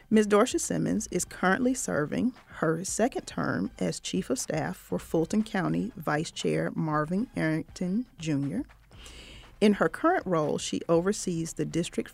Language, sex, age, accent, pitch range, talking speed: English, female, 40-59, American, 155-210 Hz, 145 wpm